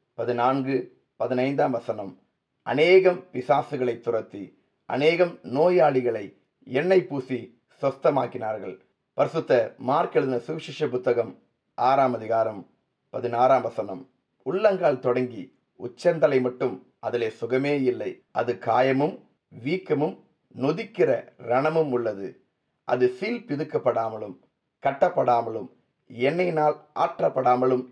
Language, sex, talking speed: Tamil, male, 80 wpm